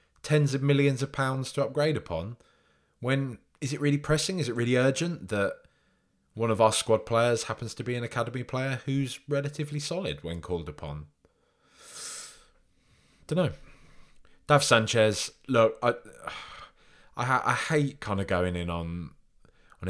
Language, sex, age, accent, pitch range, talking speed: English, male, 20-39, British, 110-150 Hz, 150 wpm